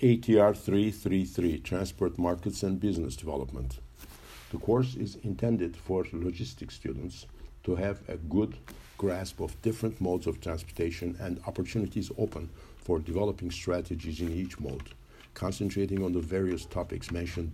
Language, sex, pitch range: Turkish, male, 85-110 Hz